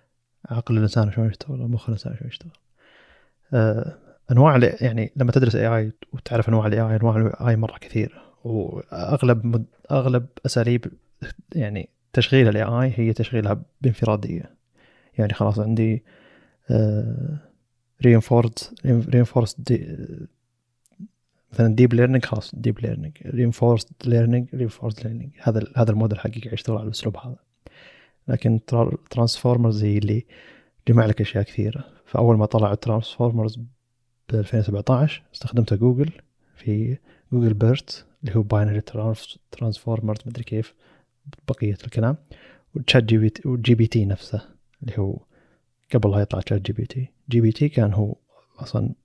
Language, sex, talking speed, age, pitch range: Arabic, male, 135 wpm, 30-49, 110-125 Hz